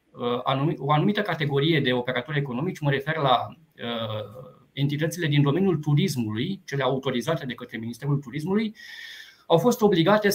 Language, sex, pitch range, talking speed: Romanian, male, 145-190 Hz, 130 wpm